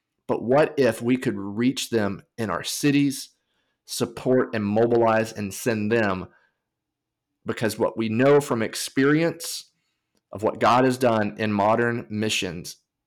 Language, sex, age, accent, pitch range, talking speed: English, male, 30-49, American, 110-130 Hz, 140 wpm